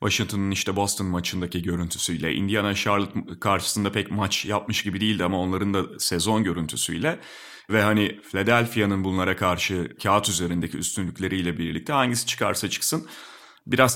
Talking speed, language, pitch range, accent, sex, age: 130 wpm, Turkish, 100-130 Hz, native, male, 30-49